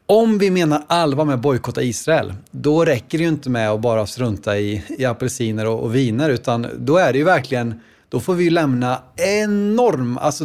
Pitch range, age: 125-150 Hz, 30-49